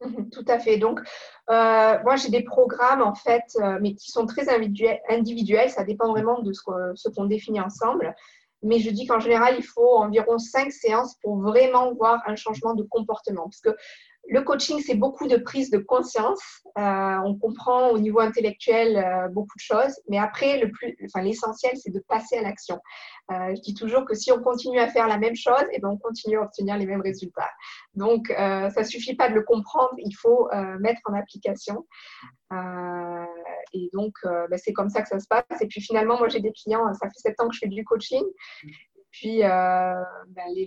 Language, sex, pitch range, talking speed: French, female, 200-235 Hz, 205 wpm